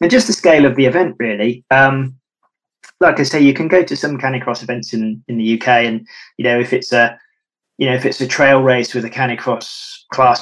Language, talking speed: English, 230 wpm